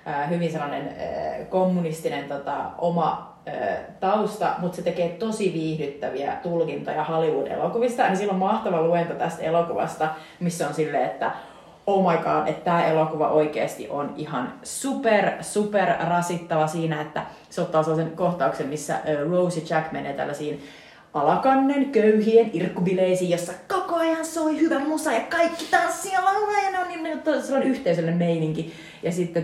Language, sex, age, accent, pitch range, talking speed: Finnish, female, 30-49, native, 160-200 Hz, 145 wpm